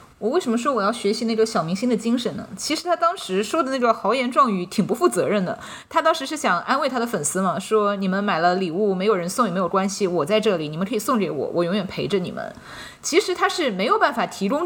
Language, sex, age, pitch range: Chinese, female, 20-39, 195-250 Hz